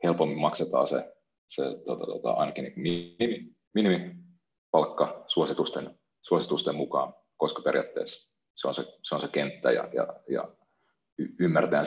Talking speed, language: 130 wpm, Finnish